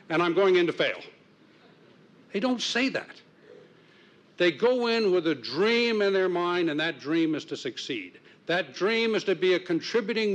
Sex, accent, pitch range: male, American, 150-195 Hz